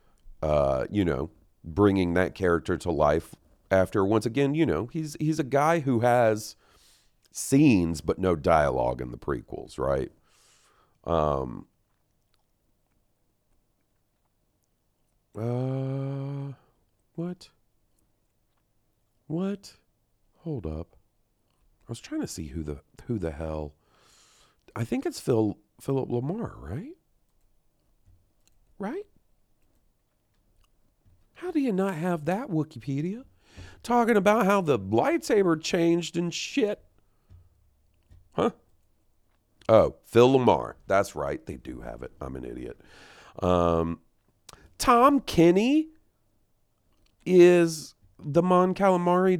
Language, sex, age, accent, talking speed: English, male, 40-59, American, 105 wpm